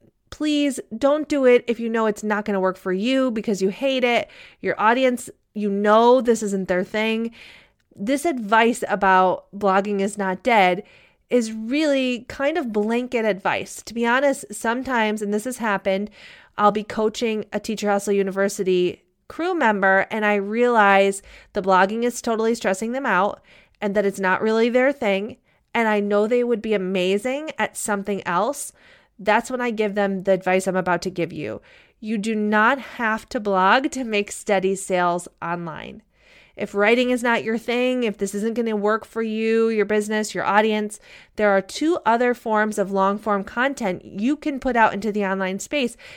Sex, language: female, English